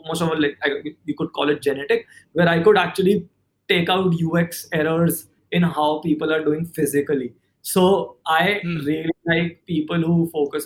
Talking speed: 170 wpm